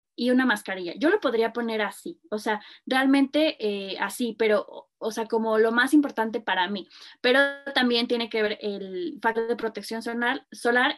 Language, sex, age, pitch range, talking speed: Spanish, female, 20-39, 215-255 Hz, 180 wpm